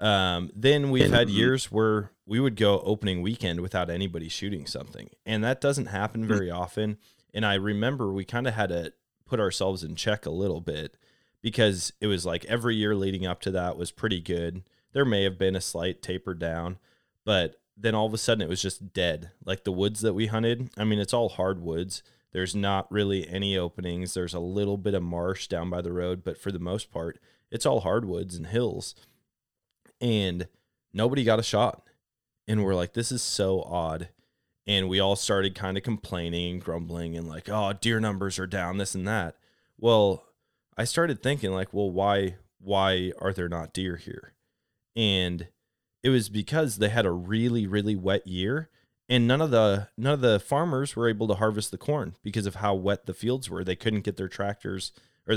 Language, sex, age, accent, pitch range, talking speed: English, male, 20-39, American, 95-110 Hz, 200 wpm